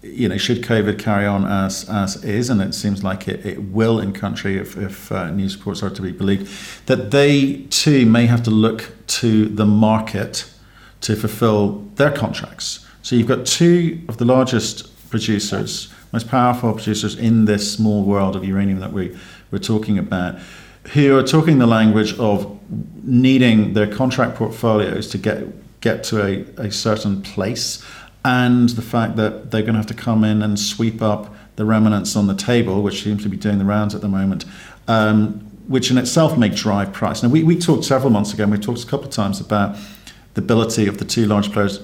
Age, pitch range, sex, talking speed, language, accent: 50-69, 100-120 Hz, male, 200 wpm, English, British